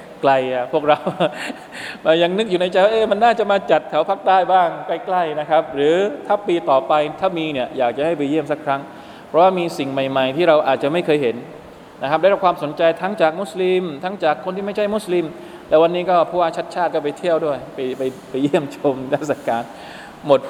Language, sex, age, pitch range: Thai, male, 20-39, 135-175 Hz